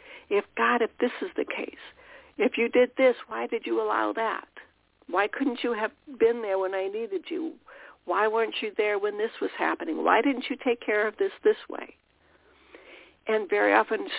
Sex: female